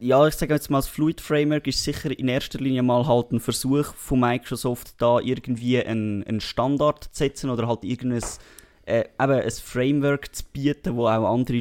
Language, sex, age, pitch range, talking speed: German, male, 20-39, 115-130 Hz, 195 wpm